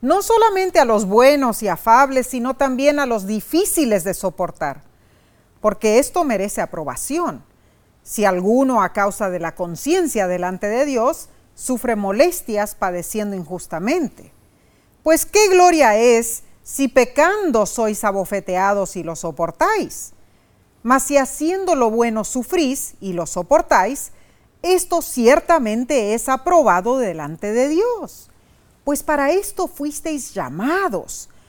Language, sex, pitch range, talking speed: Spanish, female, 215-320 Hz, 120 wpm